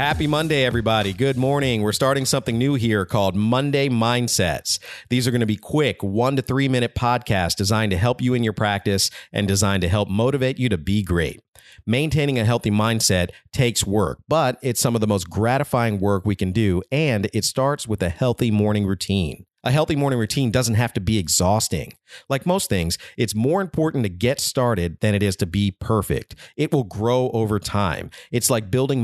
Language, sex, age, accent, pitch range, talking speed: English, male, 40-59, American, 100-125 Hz, 200 wpm